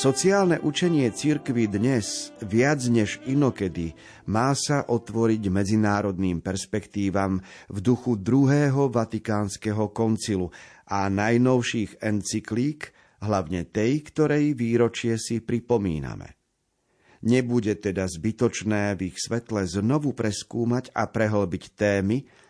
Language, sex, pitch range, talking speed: Slovak, male, 100-130 Hz, 100 wpm